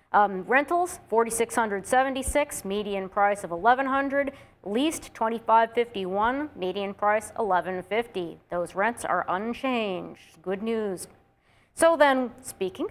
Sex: female